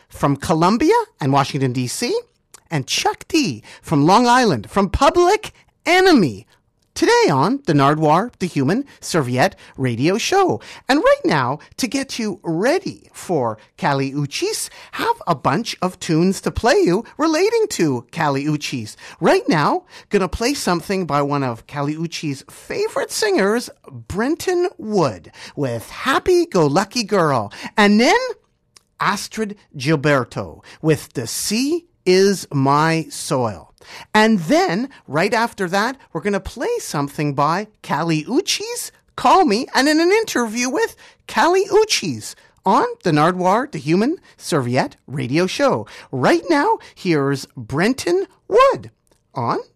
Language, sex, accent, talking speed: English, male, American, 135 wpm